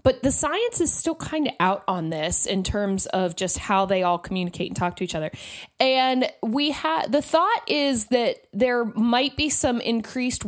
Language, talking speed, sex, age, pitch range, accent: English, 200 wpm, female, 20-39, 195-275 Hz, American